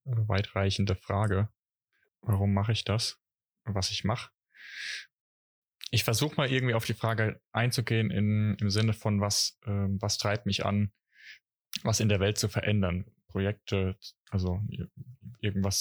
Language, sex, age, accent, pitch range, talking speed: German, male, 20-39, German, 95-115 Hz, 135 wpm